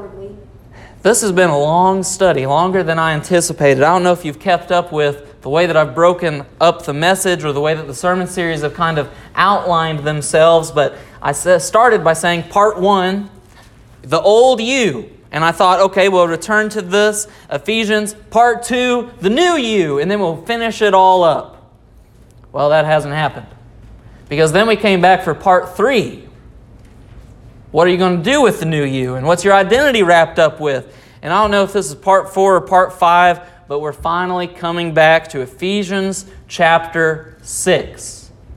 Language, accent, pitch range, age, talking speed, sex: English, American, 145-195 Hz, 30-49, 185 wpm, male